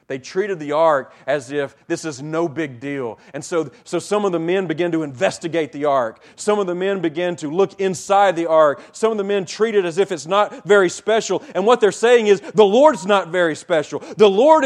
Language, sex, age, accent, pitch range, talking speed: English, male, 40-59, American, 140-205 Hz, 230 wpm